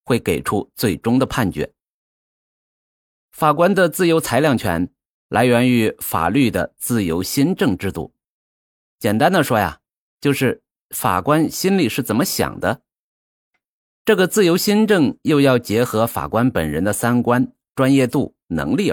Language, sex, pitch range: Chinese, male, 105-145 Hz